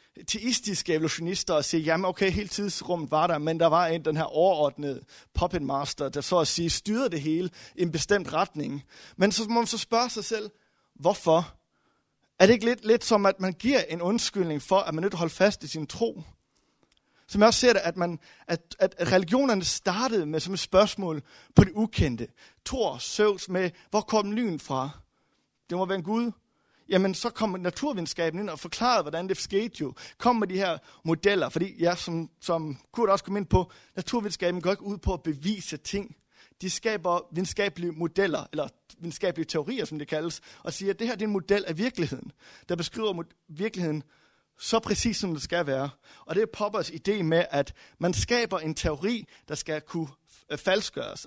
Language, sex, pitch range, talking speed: Danish, male, 165-210 Hz, 200 wpm